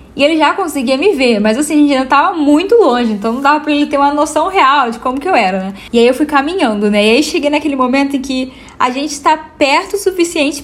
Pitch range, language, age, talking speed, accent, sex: 235-305 Hz, Portuguese, 10-29, 270 wpm, Brazilian, female